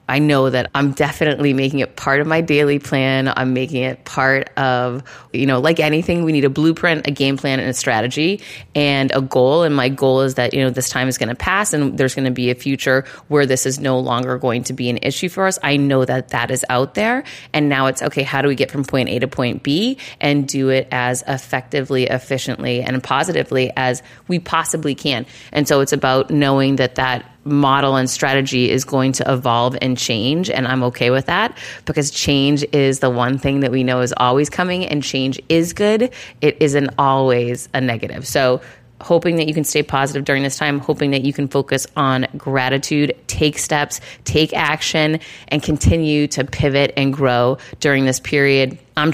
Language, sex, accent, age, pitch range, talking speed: English, female, American, 30-49, 130-150 Hz, 210 wpm